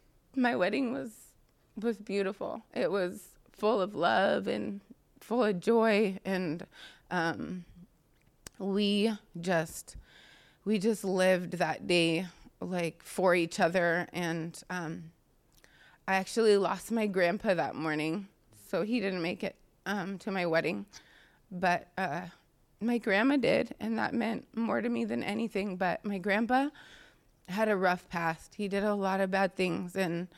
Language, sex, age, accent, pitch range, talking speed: English, female, 20-39, American, 170-205 Hz, 145 wpm